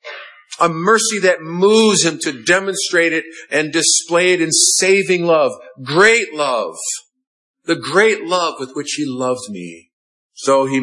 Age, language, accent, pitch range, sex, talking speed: 50-69, English, American, 135-210 Hz, male, 145 wpm